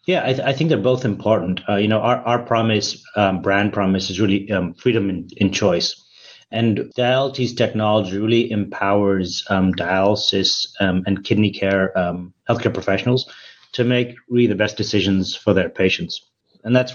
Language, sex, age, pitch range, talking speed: English, male, 30-49, 95-115 Hz, 175 wpm